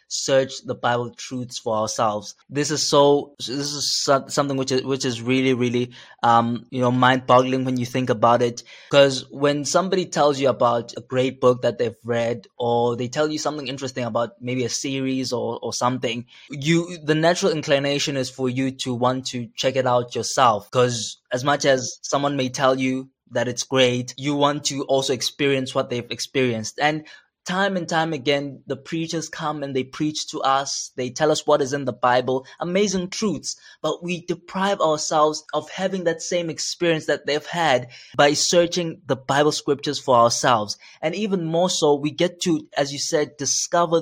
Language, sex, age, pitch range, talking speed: English, male, 20-39, 125-150 Hz, 190 wpm